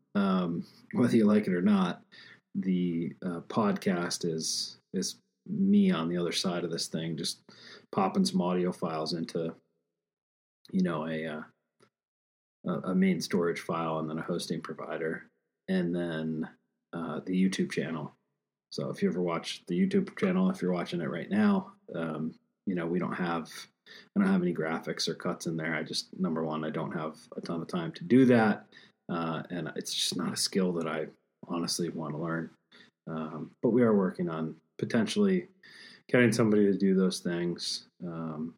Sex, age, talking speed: male, 40-59, 180 wpm